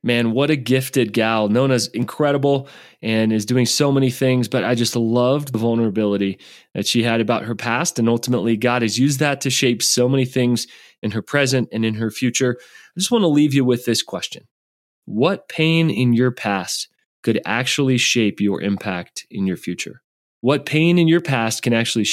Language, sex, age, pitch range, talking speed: English, male, 20-39, 110-135 Hz, 195 wpm